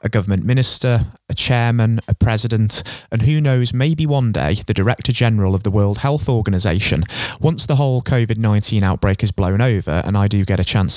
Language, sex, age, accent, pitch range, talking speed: English, male, 20-39, British, 95-125 Hz, 190 wpm